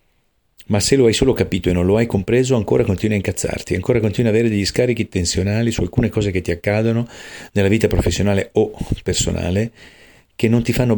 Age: 40-59